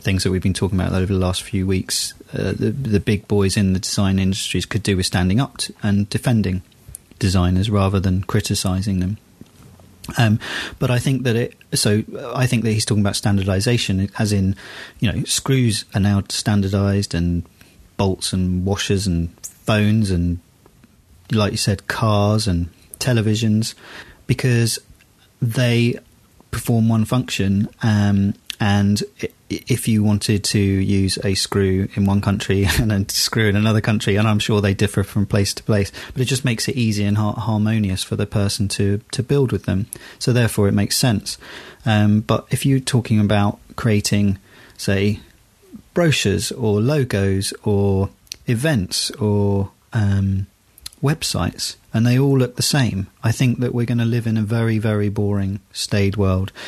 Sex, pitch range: male, 100-115 Hz